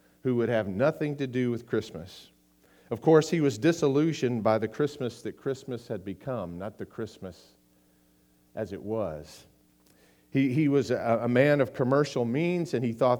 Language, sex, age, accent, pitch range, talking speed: English, male, 50-69, American, 75-125 Hz, 175 wpm